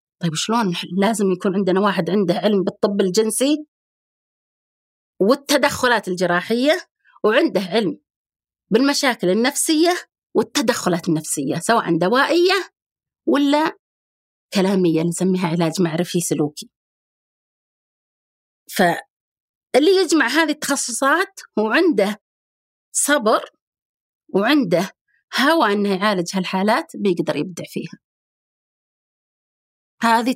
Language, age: Arabic, 30-49